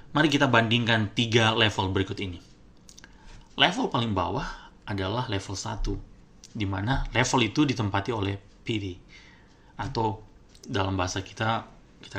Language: Indonesian